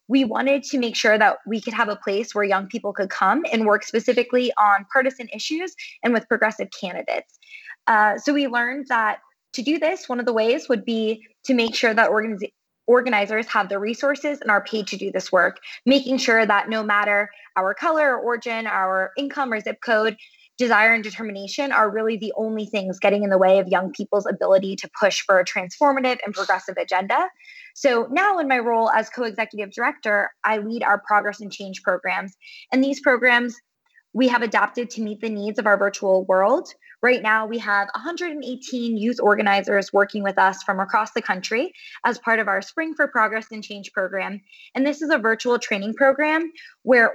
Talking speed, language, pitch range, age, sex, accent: 195 wpm, English, 205-265 Hz, 20-39, female, American